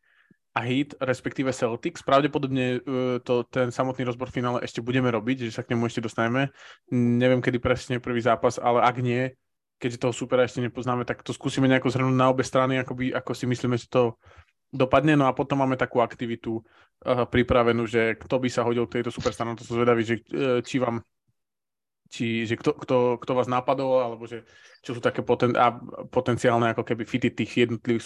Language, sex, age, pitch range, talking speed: Slovak, male, 20-39, 120-135 Hz, 200 wpm